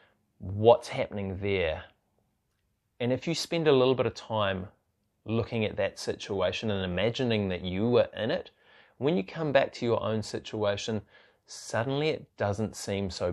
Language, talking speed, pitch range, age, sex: English, 160 wpm, 90-110 Hz, 20-39, male